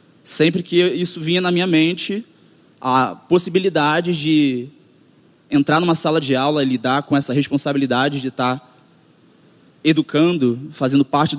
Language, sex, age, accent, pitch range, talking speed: Portuguese, male, 20-39, Brazilian, 130-155 Hz, 130 wpm